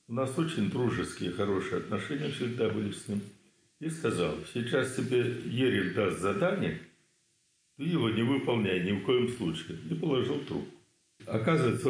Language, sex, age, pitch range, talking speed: Russian, male, 60-79, 95-130 Hz, 150 wpm